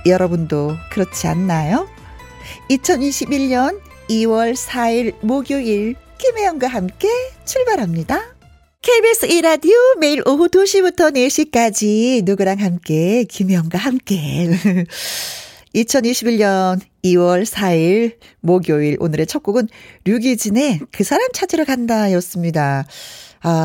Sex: female